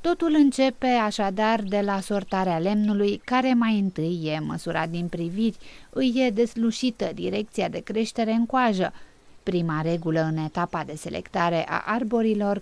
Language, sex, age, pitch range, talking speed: Romanian, female, 30-49, 175-235 Hz, 145 wpm